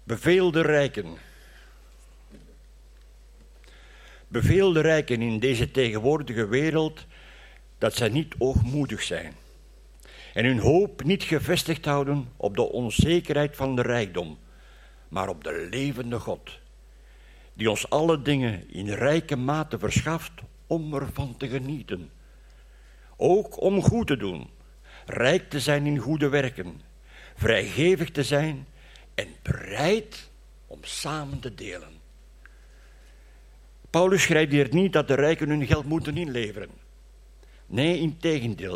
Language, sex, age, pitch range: Dutch, male, 60-79, 100-160 Hz